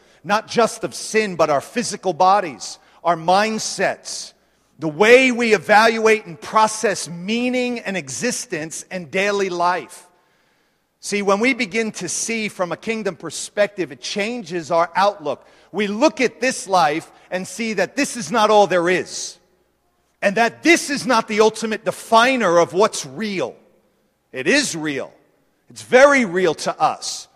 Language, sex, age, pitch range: Korean, male, 40-59, 180-225 Hz